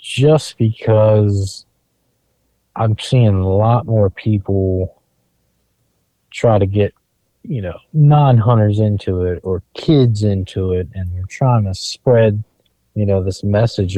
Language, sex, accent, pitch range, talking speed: English, male, American, 90-110 Hz, 125 wpm